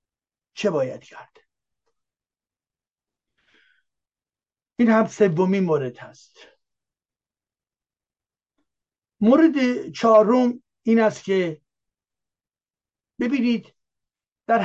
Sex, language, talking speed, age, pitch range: male, English, 60 wpm, 60-79, 155-220 Hz